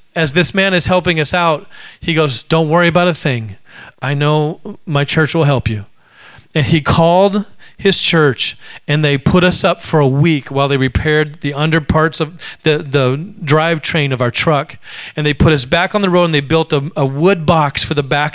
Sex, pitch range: male, 160-205 Hz